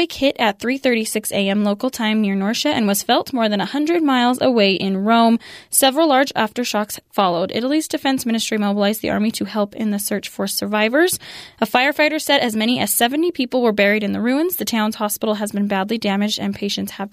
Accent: American